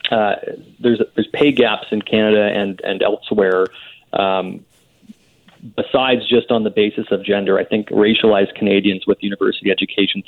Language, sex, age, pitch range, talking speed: English, male, 30-49, 100-110 Hz, 145 wpm